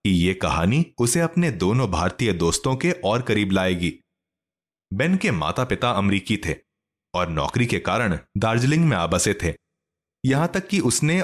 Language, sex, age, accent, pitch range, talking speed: Hindi, male, 30-49, native, 95-150 Hz, 165 wpm